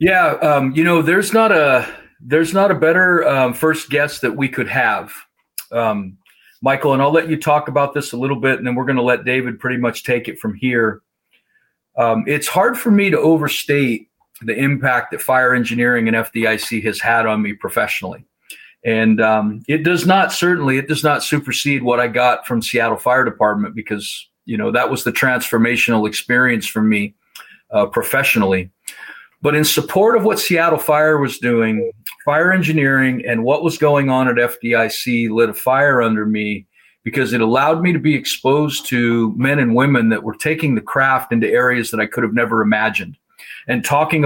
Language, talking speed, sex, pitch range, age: English, 190 wpm, male, 115-150 Hz, 50-69